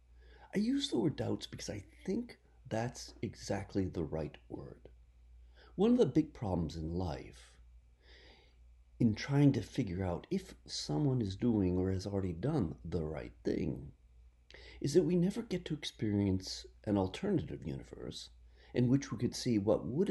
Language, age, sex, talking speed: English, 50-69, male, 160 wpm